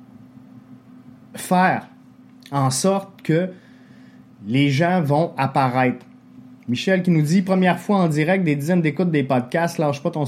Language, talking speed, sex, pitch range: French, 145 wpm, male, 140-205 Hz